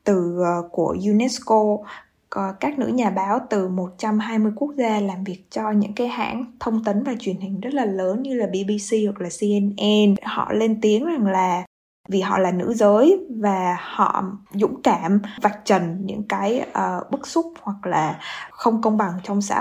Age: 20-39